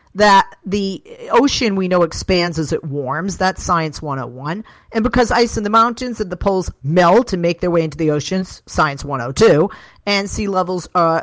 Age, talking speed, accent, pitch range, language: 40-59, 185 wpm, American, 165-230 Hz, English